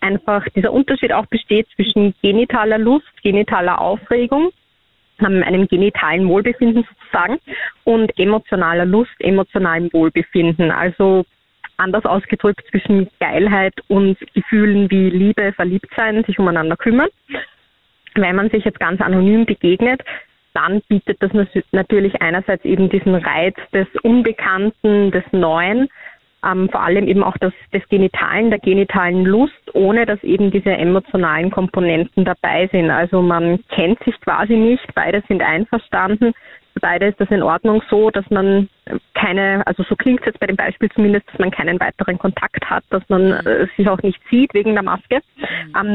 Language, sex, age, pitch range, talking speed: German, female, 20-39, 185-215 Hz, 150 wpm